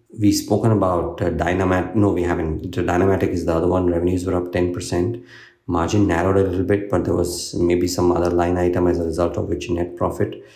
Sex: male